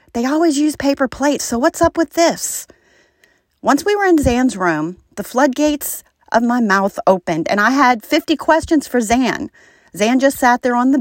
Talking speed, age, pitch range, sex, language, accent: 190 wpm, 40-59, 185-250 Hz, female, English, American